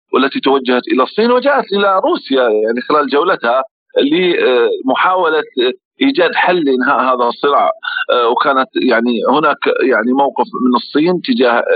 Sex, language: male, Arabic